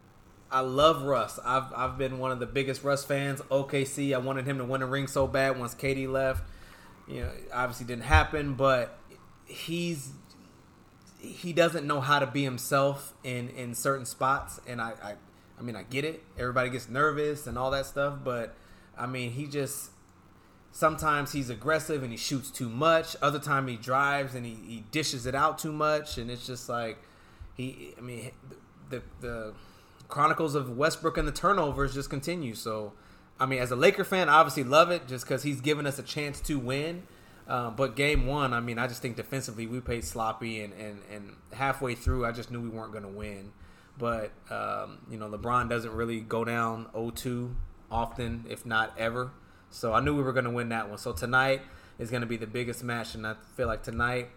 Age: 20-39